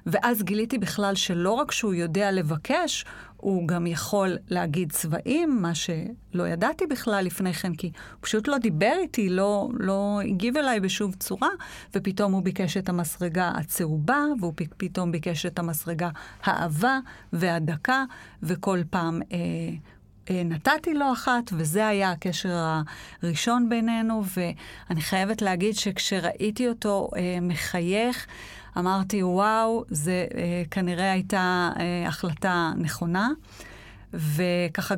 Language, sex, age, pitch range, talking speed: Hebrew, female, 30-49, 170-210 Hz, 125 wpm